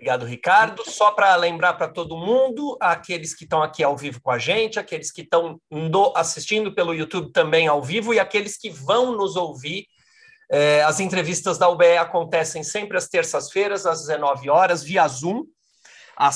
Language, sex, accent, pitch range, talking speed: Portuguese, male, Brazilian, 160-215 Hz, 170 wpm